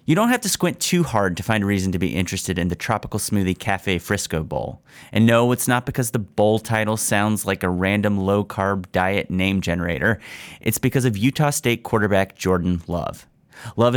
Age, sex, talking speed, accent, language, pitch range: 30-49, male, 200 wpm, American, English, 95-120 Hz